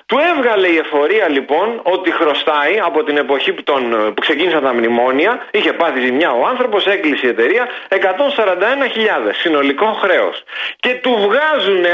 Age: 40-59